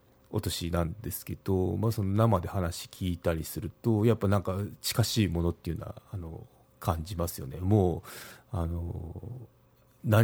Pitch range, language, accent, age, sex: 85-115 Hz, Japanese, native, 30-49, male